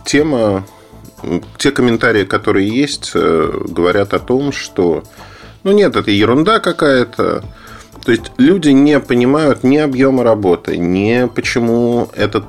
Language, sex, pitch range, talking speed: Russian, male, 95-130 Hz, 125 wpm